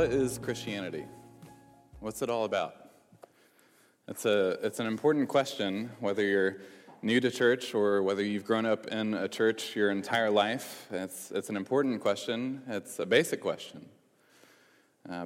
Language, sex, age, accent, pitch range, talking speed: English, male, 20-39, American, 105-125 Hz, 150 wpm